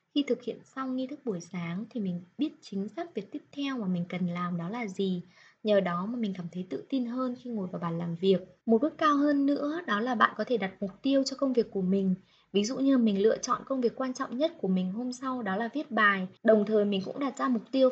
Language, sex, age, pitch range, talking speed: Vietnamese, female, 20-39, 190-255 Hz, 280 wpm